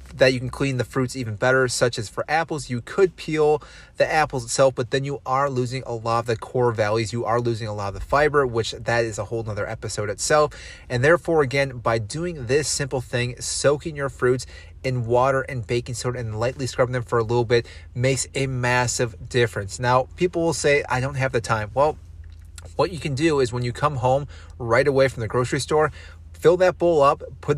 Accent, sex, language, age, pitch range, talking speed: American, male, English, 30-49, 115-140 Hz, 225 wpm